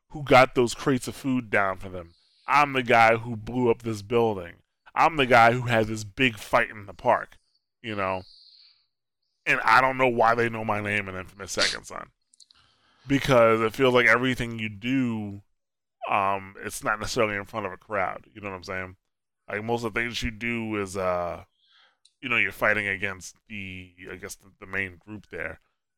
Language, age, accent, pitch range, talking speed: English, 20-39, American, 95-115 Hz, 200 wpm